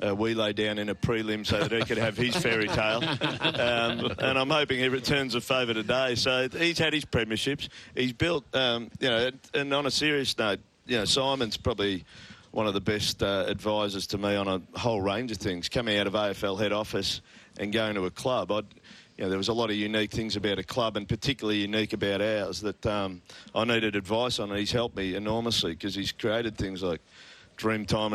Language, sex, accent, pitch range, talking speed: English, male, Australian, 100-120 Hz, 220 wpm